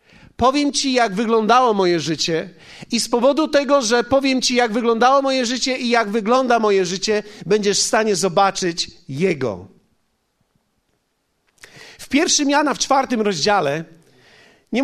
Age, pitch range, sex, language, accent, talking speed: 40-59, 195-250 Hz, male, Polish, native, 140 wpm